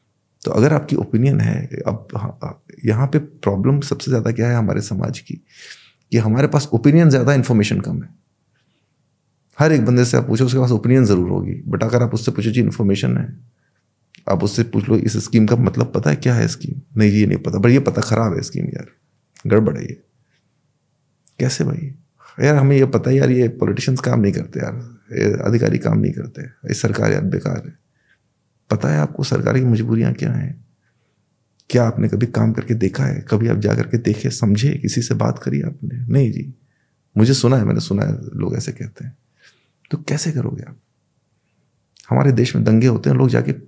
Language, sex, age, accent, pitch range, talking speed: Hindi, male, 30-49, native, 115-145 Hz, 195 wpm